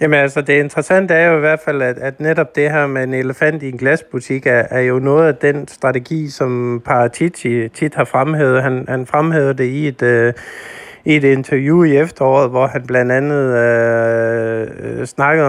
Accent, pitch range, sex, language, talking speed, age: native, 130-155 Hz, male, Danish, 180 wpm, 50-69